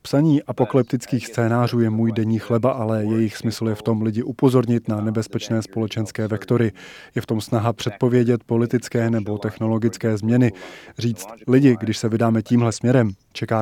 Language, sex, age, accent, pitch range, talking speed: Czech, male, 20-39, native, 110-125 Hz, 160 wpm